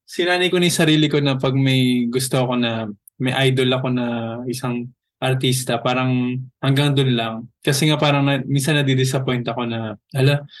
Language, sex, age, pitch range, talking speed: Filipino, male, 20-39, 120-145 Hz, 175 wpm